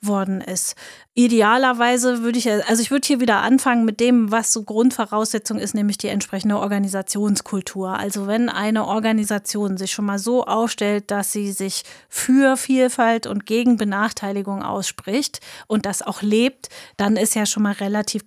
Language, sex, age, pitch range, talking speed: German, female, 20-39, 200-220 Hz, 160 wpm